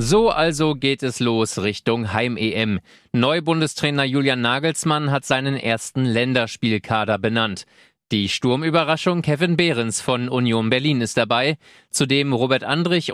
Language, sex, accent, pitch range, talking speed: German, male, German, 115-140 Hz, 125 wpm